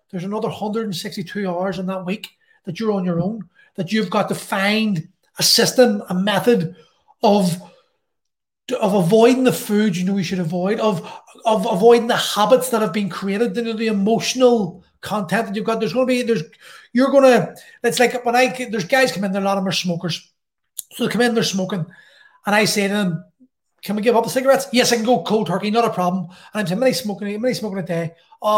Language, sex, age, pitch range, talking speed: English, male, 30-49, 190-240 Hz, 225 wpm